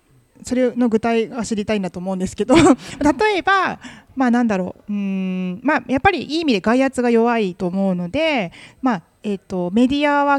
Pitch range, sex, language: 190-260 Hz, female, Japanese